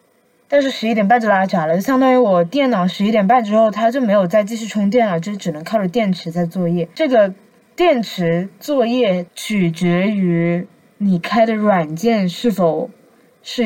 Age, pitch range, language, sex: 20-39, 175-230 Hz, Chinese, female